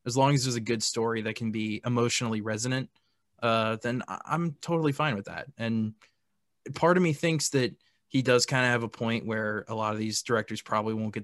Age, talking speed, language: 20-39, 225 wpm, English